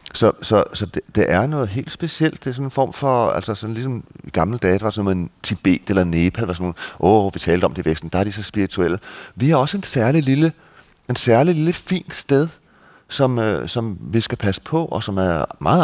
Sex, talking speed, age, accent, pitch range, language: male, 240 wpm, 30-49, native, 95-125 Hz, Danish